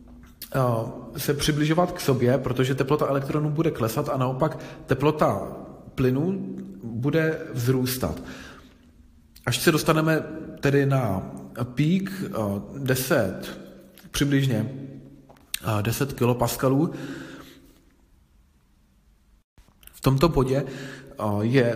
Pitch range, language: 120-145 Hz, Czech